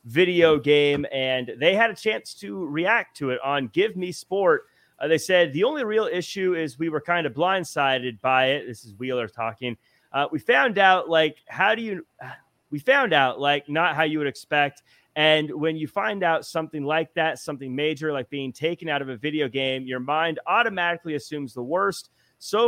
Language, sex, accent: English, male, American